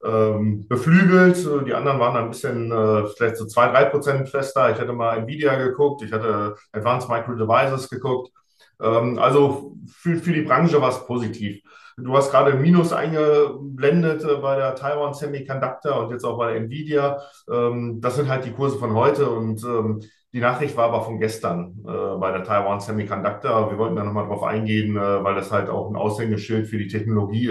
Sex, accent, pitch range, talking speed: male, German, 115-145 Hz, 170 wpm